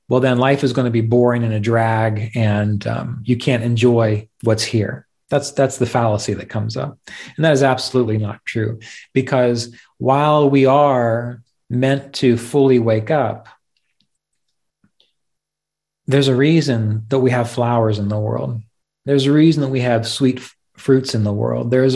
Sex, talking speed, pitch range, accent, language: male, 170 wpm, 115-135 Hz, American, English